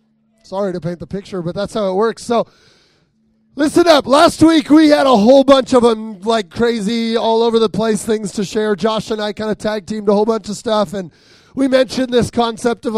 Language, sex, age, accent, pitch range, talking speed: English, male, 30-49, American, 210-255 Hz, 225 wpm